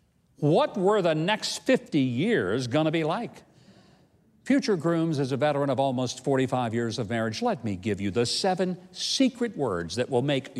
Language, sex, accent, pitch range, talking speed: English, male, American, 120-190 Hz, 175 wpm